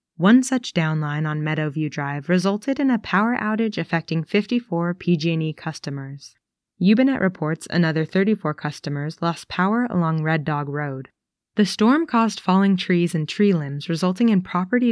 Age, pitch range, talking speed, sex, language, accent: 20-39, 155-200 Hz, 150 wpm, female, English, American